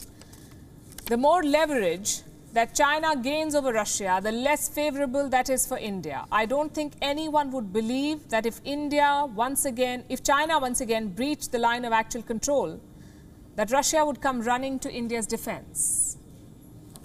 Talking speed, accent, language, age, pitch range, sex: 155 wpm, Indian, English, 50-69, 235-285 Hz, female